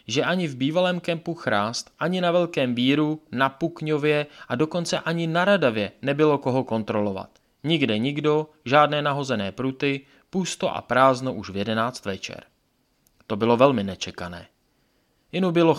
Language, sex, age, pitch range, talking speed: Czech, male, 20-39, 115-155 Hz, 145 wpm